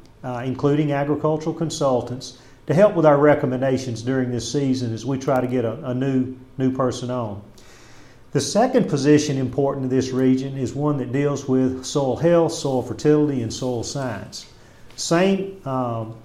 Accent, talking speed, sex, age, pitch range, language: American, 160 wpm, male, 40-59, 125-145 Hz, English